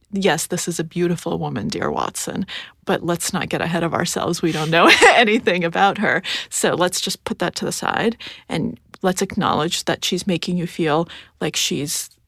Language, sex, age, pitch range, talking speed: English, female, 30-49, 170-195 Hz, 190 wpm